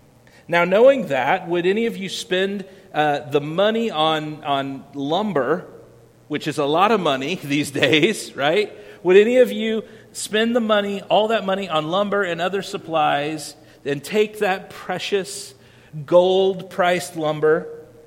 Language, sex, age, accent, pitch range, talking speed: English, male, 40-59, American, 150-205 Hz, 145 wpm